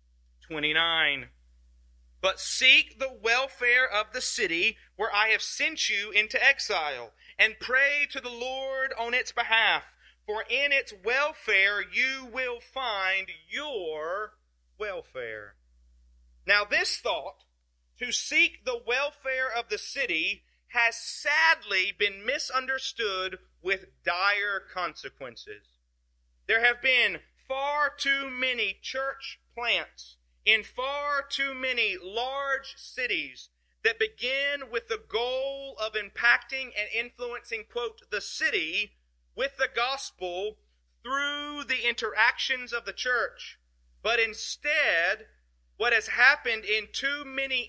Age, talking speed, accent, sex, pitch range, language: 40-59, 115 wpm, American, male, 185-275 Hz, English